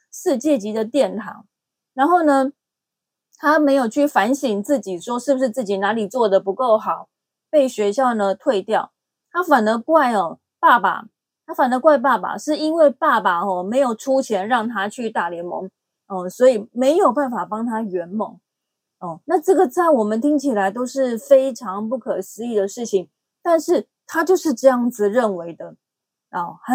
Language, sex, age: Chinese, female, 20-39